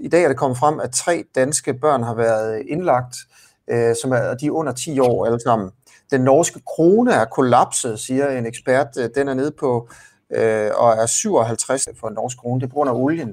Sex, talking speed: male, 220 wpm